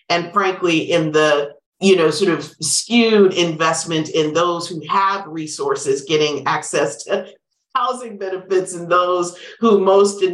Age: 50-69